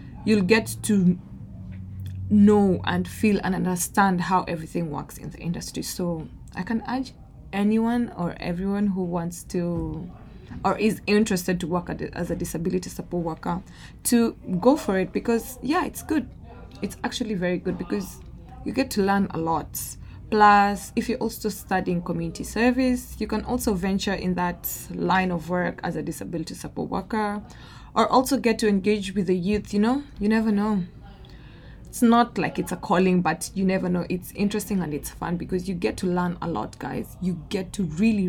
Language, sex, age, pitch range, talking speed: English, female, 20-39, 175-215 Hz, 180 wpm